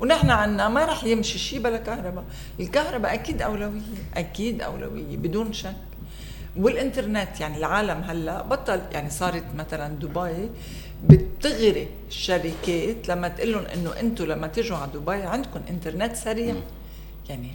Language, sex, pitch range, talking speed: Arabic, female, 165-230 Hz, 130 wpm